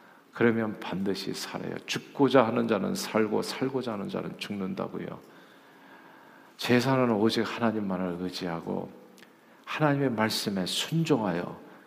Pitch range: 115-165 Hz